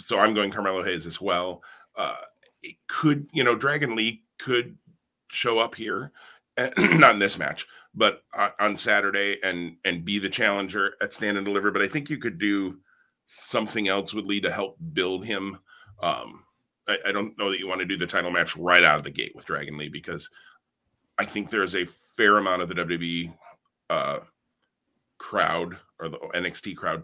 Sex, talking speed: male, 190 wpm